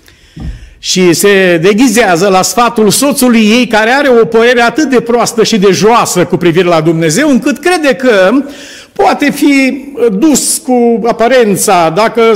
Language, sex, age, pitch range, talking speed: Romanian, male, 50-69, 150-225 Hz, 145 wpm